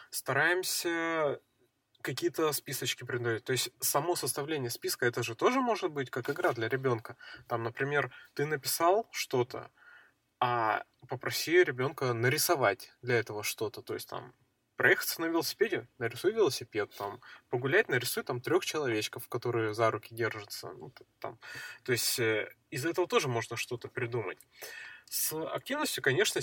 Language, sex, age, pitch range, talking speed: Russian, male, 20-39, 120-150 Hz, 140 wpm